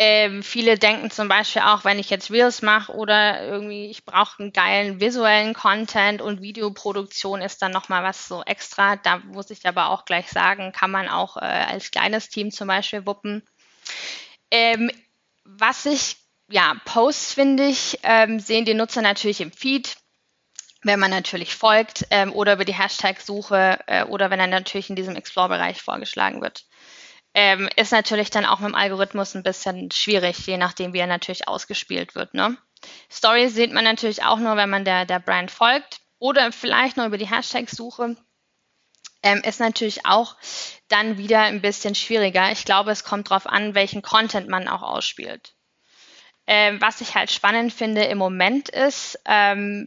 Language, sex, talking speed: German, female, 170 wpm